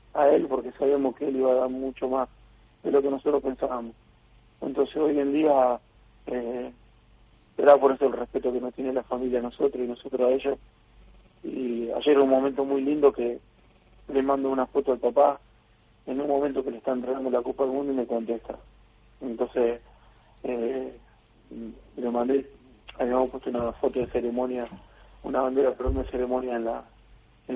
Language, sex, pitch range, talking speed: Spanish, male, 115-130 Hz, 180 wpm